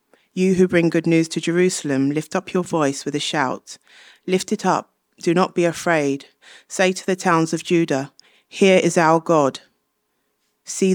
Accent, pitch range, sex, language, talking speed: British, 140-170 Hz, female, English, 175 wpm